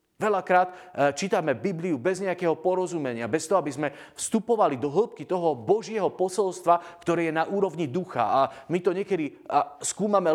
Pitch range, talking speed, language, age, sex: 120-175 Hz, 150 wpm, Slovak, 40-59, male